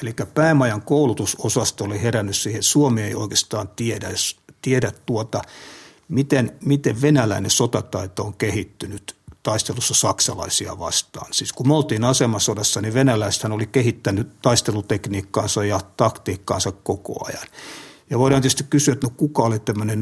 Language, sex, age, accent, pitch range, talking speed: Finnish, male, 60-79, native, 105-135 Hz, 130 wpm